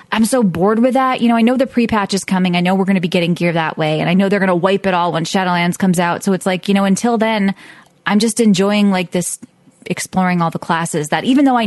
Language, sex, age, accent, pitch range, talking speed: English, female, 20-39, American, 170-205 Hz, 290 wpm